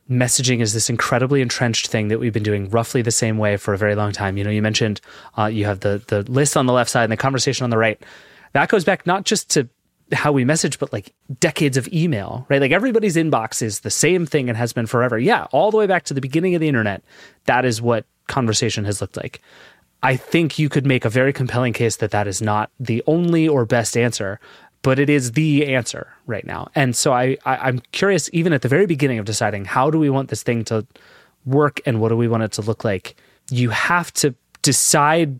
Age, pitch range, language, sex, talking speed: 30-49, 110-145 Hz, English, male, 235 wpm